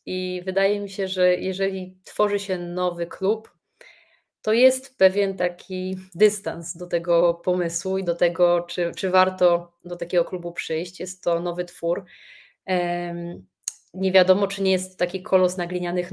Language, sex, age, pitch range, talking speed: Polish, female, 20-39, 175-190 Hz, 155 wpm